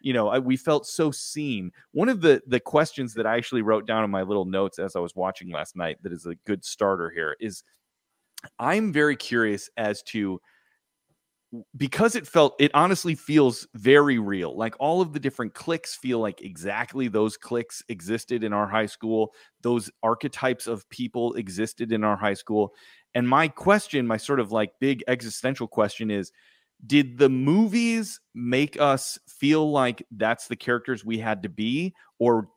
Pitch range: 110-140 Hz